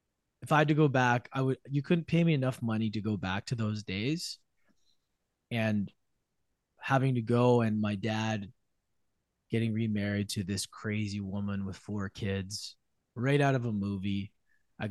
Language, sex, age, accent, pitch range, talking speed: English, male, 20-39, American, 105-135 Hz, 170 wpm